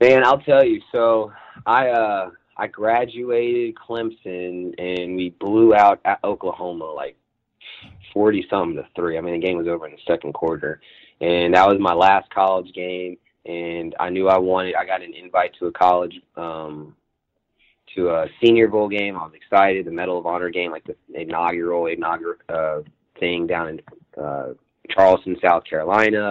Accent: American